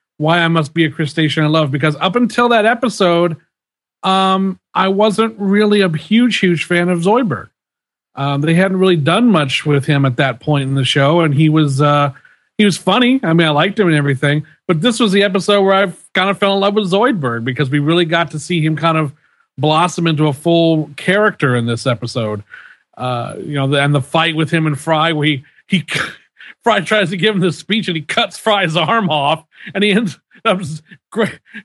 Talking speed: 210 wpm